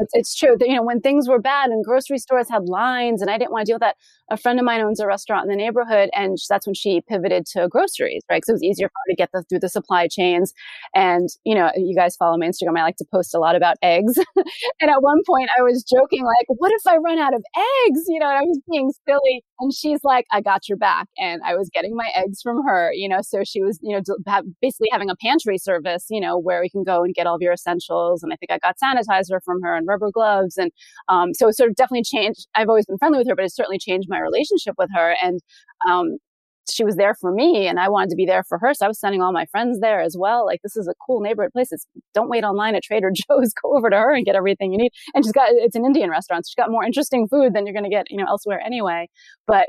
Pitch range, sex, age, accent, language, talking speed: 190-265 Hz, female, 30-49, American, English, 280 wpm